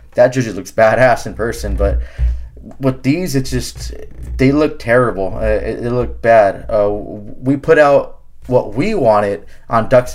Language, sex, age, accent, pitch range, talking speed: English, male, 20-39, American, 105-135 Hz, 155 wpm